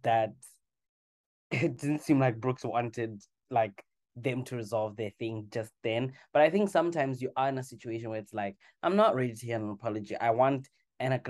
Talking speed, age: 195 wpm, 20-39